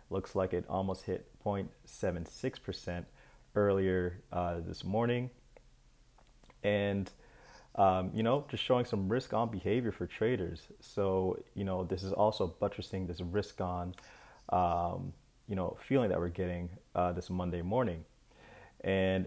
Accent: American